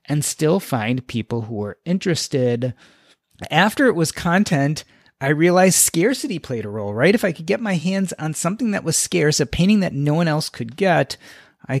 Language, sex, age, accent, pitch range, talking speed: English, male, 30-49, American, 130-185 Hz, 195 wpm